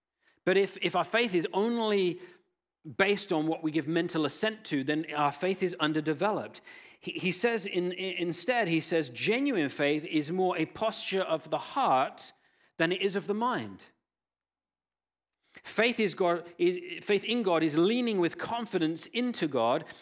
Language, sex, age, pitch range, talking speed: English, male, 40-59, 155-210 Hz, 155 wpm